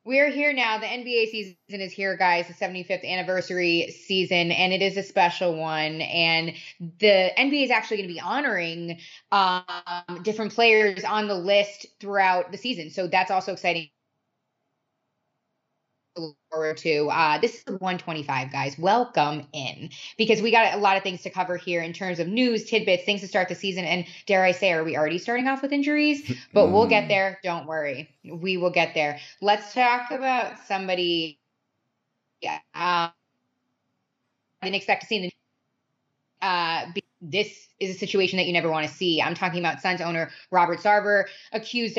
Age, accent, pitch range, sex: 20-39, American, 170-215 Hz, female